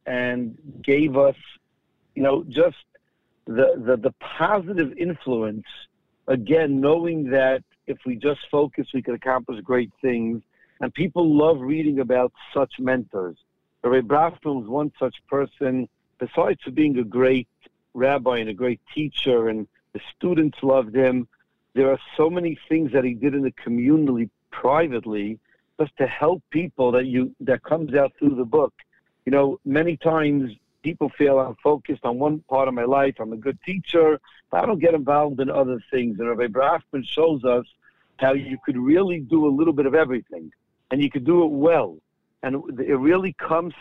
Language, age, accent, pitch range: English, 60-79, American, 130-155 Hz